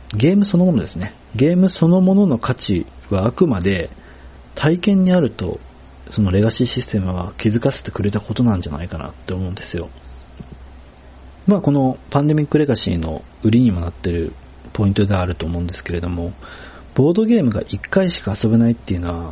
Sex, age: male, 40-59